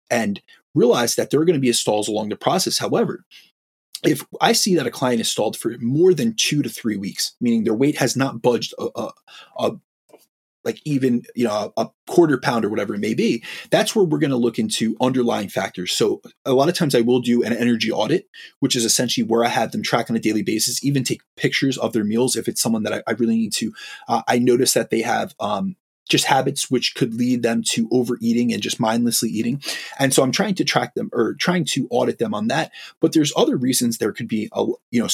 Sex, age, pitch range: male, 30-49, 115-175 Hz